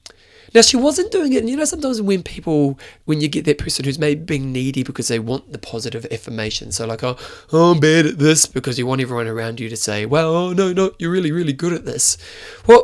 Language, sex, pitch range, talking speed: English, male, 115-165 Hz, 245 wpm